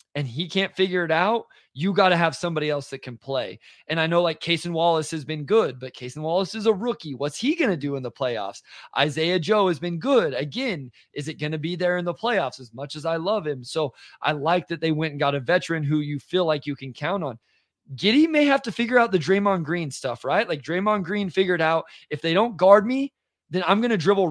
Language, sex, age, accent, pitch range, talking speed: English, male, 20-39, American, 150-190 Hz, 255 wpm